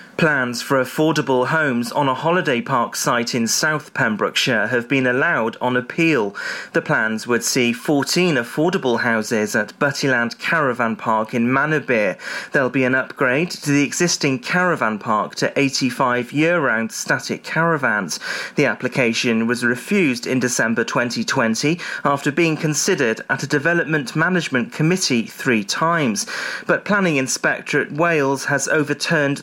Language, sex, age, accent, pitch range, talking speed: English, male, 30-49, British, 120-155 Hz, 135 wpm